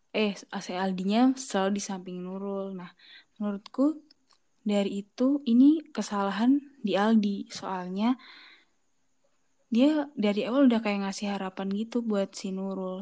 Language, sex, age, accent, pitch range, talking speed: Indonesian, female, 20-39, native, 190-245 Hz, 130 wpm